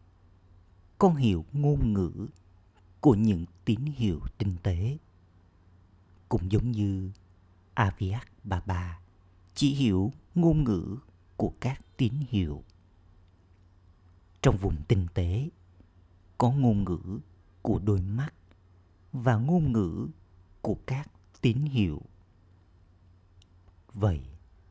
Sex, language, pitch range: male, Vietnamese, 90-110 Hz